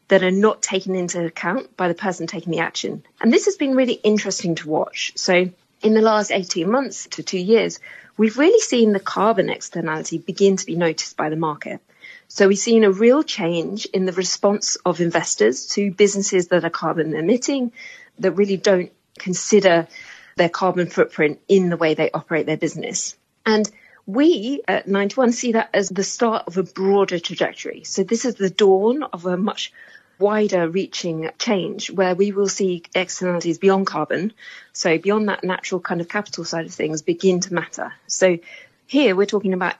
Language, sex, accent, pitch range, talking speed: English, female, British, 180-220 Hz, 185 wpm